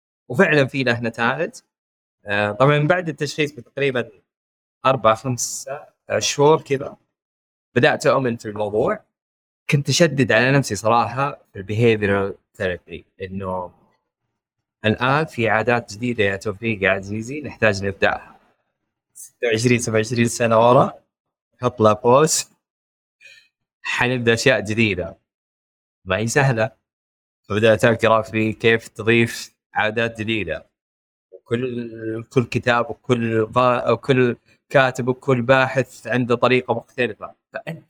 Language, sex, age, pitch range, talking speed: Arabic, male, 20-39, 110-140 Hz, 105 wpm